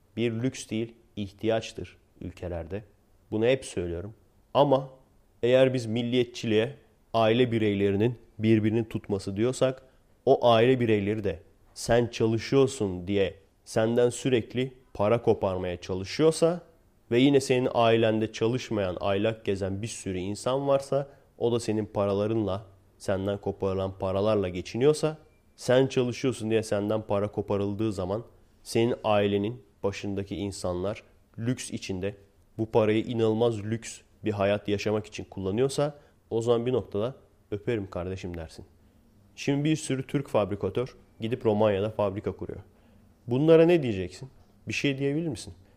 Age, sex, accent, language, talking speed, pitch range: 30-49, male, native, Turkish, 120 wpm, 100-125 Hz